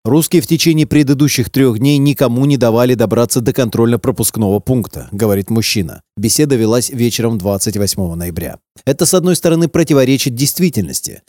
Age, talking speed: 30-49, 140 wpm